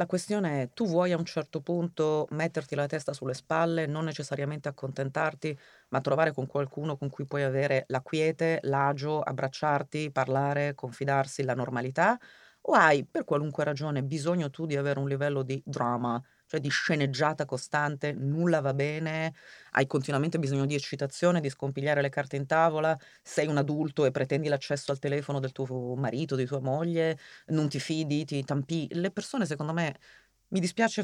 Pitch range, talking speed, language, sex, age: 135-155 Hz, 170 wpm, Italian, female, 30-49